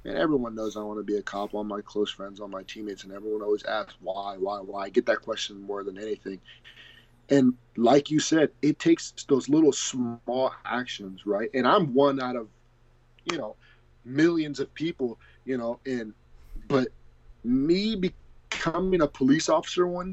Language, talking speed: English, 180 wpm